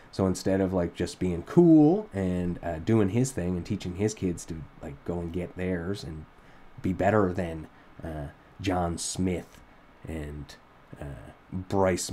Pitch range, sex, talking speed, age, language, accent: 90-115 Hz, male, 160 wpm, 30-49, English, American